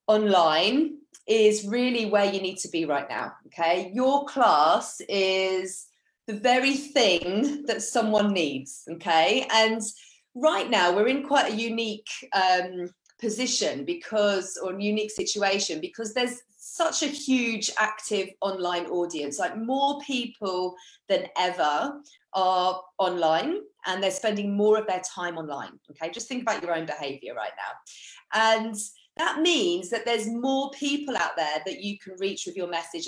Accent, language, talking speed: British, English, 150 wpm